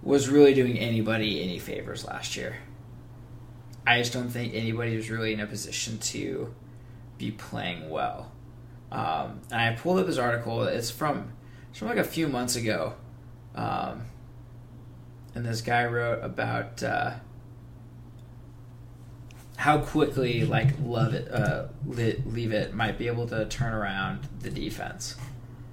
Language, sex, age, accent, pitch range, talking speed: English, male, 20-39, American, 120-125 Hz, 145 wpm